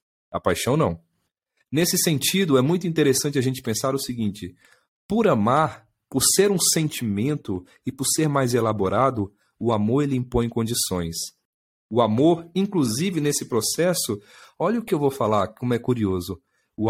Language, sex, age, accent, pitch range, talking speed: Portuguese, male, 40-59, Brazilian, 110-165 Hz, 155 wpm